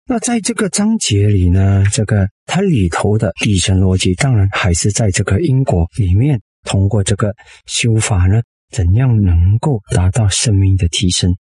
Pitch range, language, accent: 100-150 Hz, Chinese, native